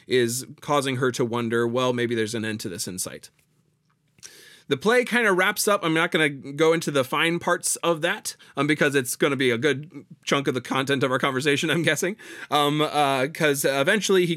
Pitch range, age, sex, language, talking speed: 125-160 Hz, 20-39, male, English, 215 wpm